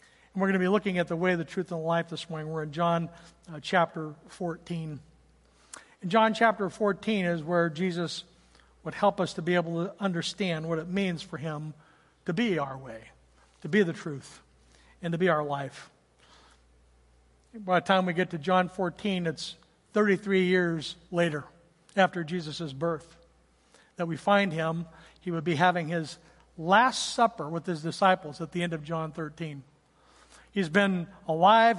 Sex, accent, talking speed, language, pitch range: male, American, 170 wpm, English, 165-205 Hz